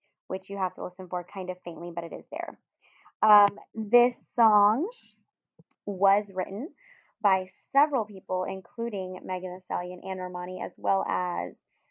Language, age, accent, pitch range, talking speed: English, 20-39, American, 185-220 Hz, 150 wpm